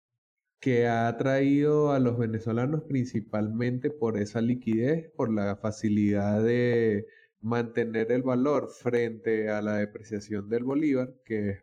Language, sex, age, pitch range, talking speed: Spanish, male, 20-39, 110-130 Hz, 130 wpm